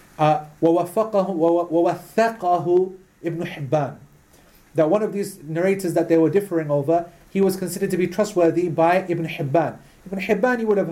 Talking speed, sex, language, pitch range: 150 wpm, male, English, 150-190 Hz